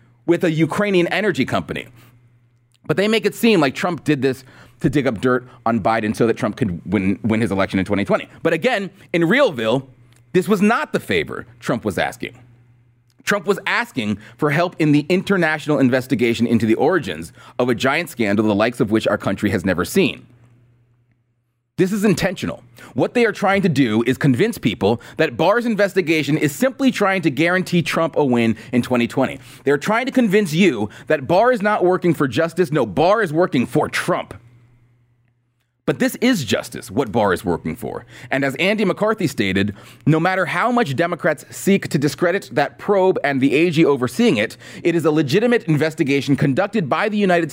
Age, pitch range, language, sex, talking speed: 30-49, 120-180 Hz, English, male, 185 wpm